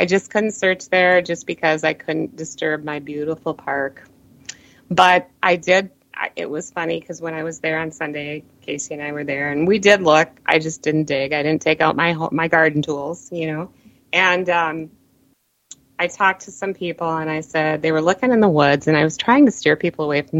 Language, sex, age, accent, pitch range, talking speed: English, female, 30-49, American, 155-205 Hz, 225 wpm